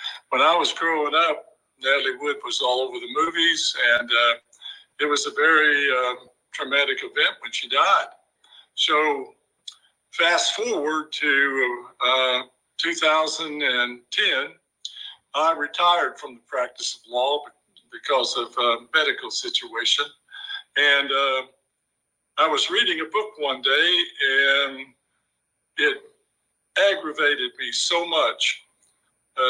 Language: English